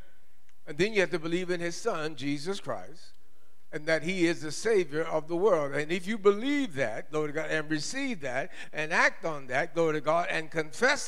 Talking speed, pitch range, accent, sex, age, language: 205 wpm, 115-170 Hz, American, male, 50-69, English